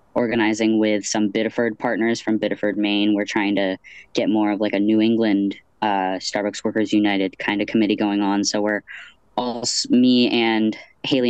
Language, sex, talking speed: English, female, 175 wpm